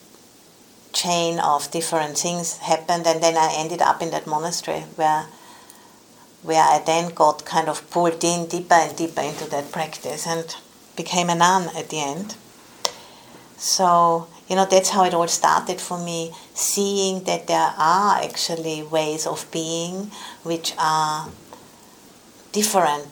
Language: English